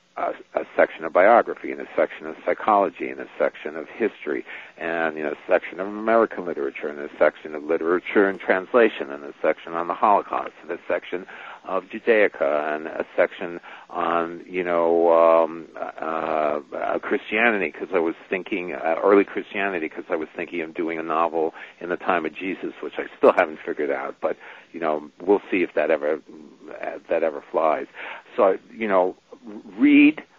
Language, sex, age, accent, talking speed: English, male, 60-79, American, 185 wpm